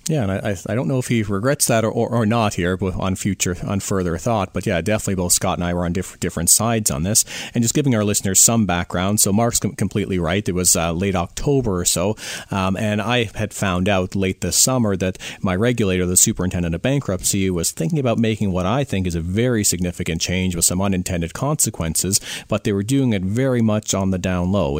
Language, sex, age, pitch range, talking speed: English, male, 40-59, 90-115 Hz, 225 wpm